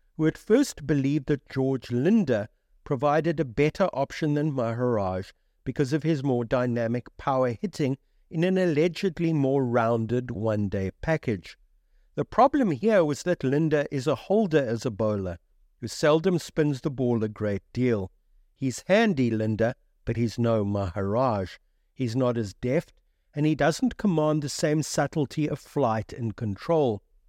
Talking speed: 150 wpm